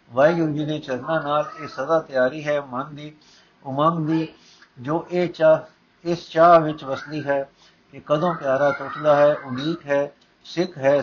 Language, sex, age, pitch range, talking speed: Punjabi, male, 60-79, 135-160 Hz, 165 wpm